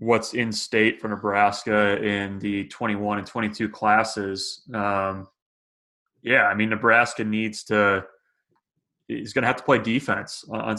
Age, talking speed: 20-39, 145 wpm